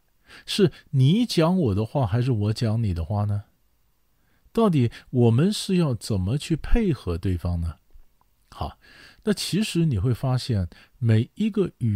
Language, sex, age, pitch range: Chinese, male, 50-69, 100-130 Hz